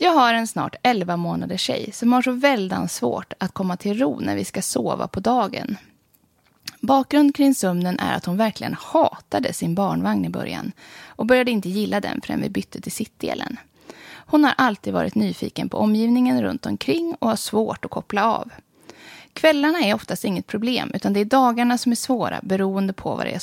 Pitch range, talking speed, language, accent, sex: 195-265 Hz, 190 wpm, English, Swedish, female